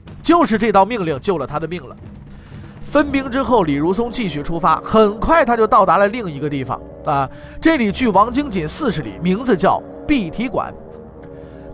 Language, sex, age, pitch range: Chinese, male, 30-49, 160-245 Hz